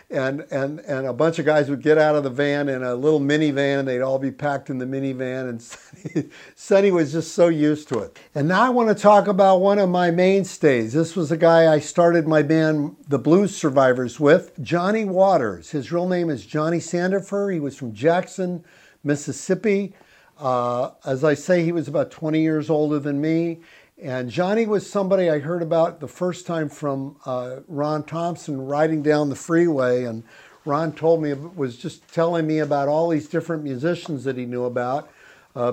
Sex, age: male, 50-69